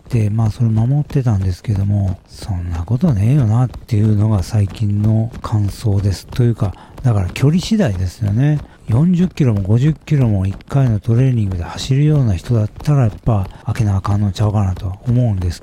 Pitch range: 100-130 Hz